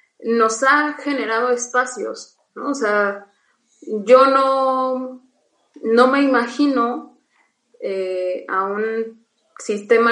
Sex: female